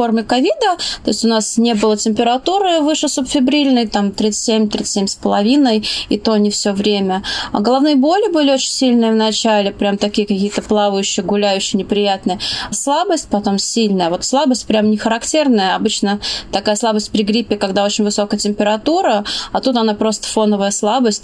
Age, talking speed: 20-39, 145 wpm